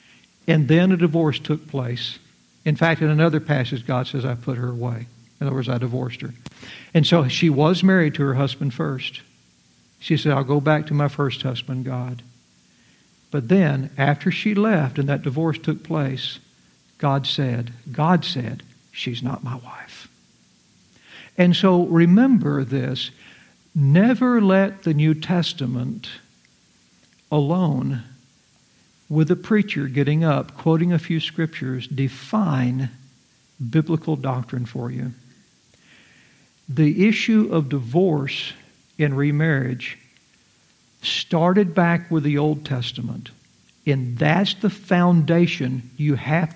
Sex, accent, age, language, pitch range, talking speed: male, American, 60-79, English, 130-170 Hz, 130 wpm